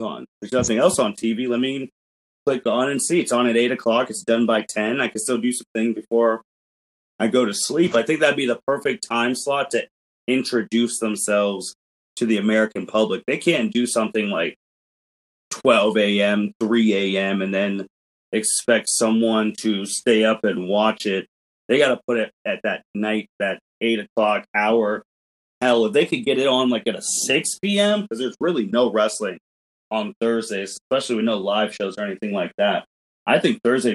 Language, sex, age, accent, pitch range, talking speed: English, male, 30-49, American, 105-125 Hz, 190 wpm